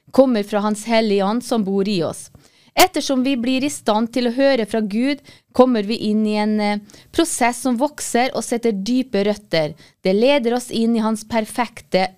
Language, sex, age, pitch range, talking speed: English, female, 20-39, 210-255 Hz, 180 wpm